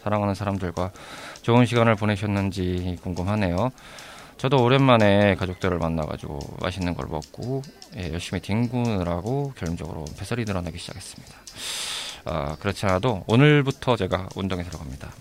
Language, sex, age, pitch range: Korean, male, 20-39, 90-125 Hz